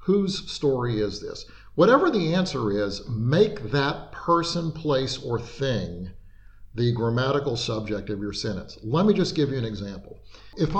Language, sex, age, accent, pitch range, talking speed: English, male, 50-69, American, 105-165 Hz, 155 wpm